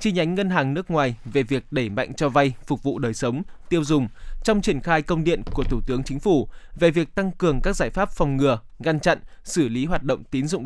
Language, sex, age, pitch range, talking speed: Vietnamese, male, 20-39, 135-175 Hz, 255 wpm